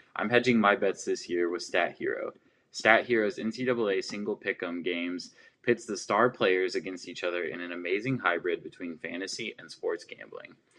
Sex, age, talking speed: male, 20-39, 180 wpm